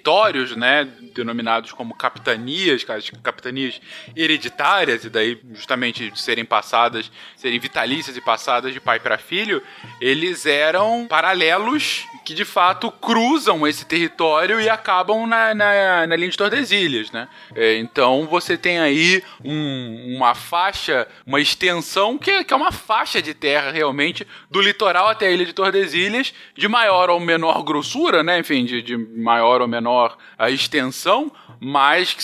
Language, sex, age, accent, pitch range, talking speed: Portuguese, male, 20-39, Brazilian, 130-205 Hz, 145 wpm